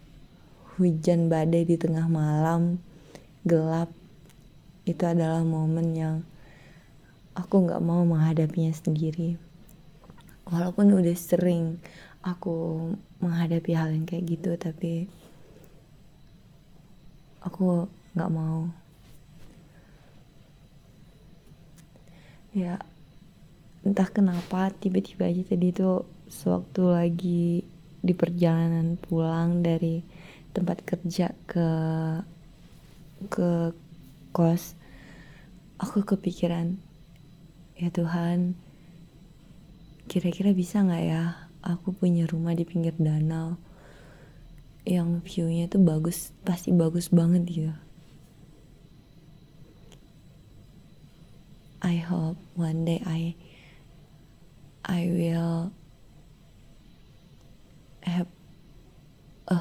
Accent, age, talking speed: native, 20-39, 75 wpm